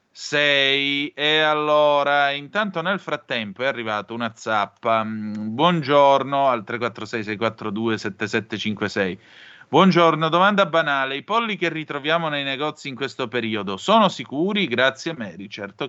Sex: male